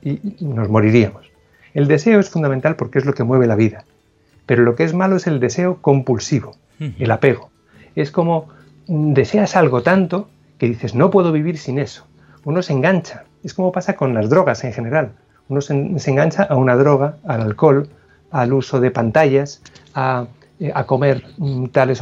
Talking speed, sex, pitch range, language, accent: 175 wpm, male, 125-155 Hz, Spanish, Spanish